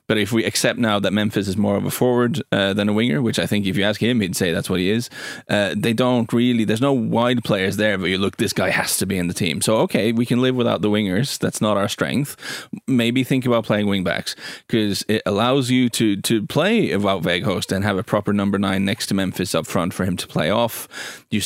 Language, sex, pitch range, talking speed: English, male, 100-120 Hz, 260 wpm